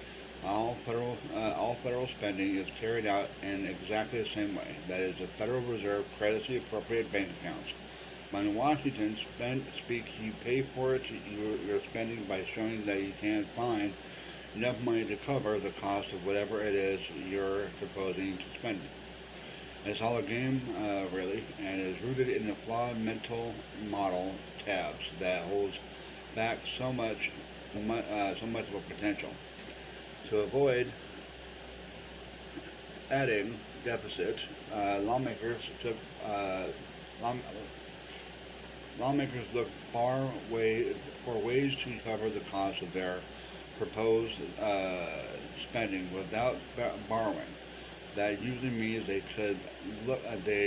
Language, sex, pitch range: English, male, 100-120 Hz